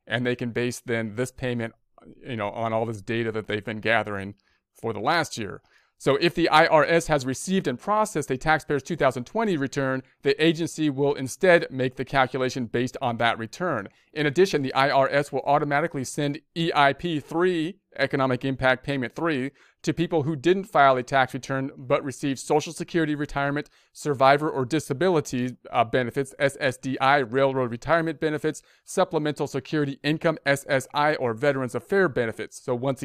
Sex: male